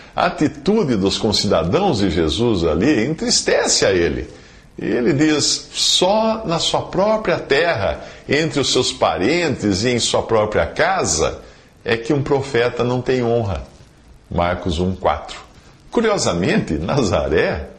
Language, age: Portuguese, 50-69